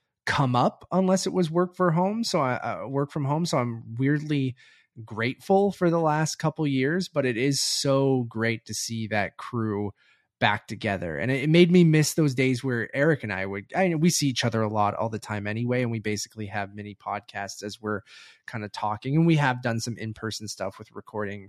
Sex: male